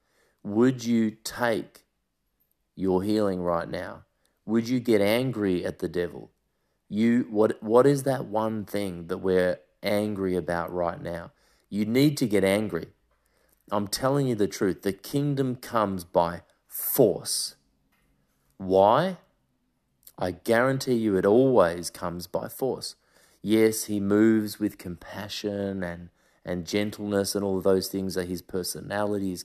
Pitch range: 95-115 Hz